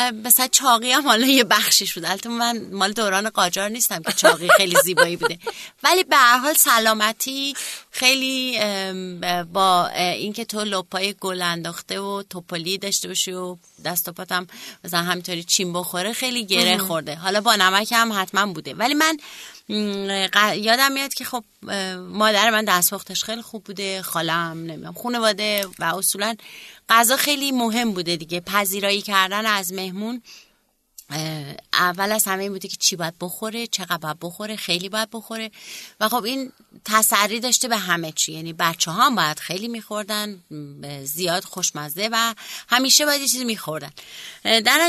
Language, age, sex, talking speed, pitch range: Persian, 30-49, female, 145 wpm, 180-235 Hz